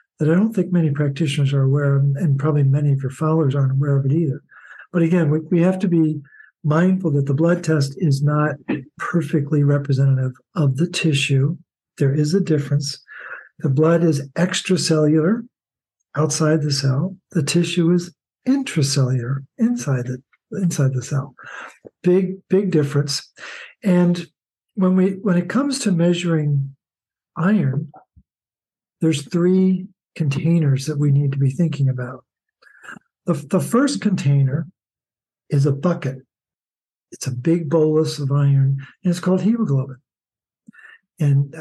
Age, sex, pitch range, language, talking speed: 60-79, male, 140-175 Hz, English, 145 wpm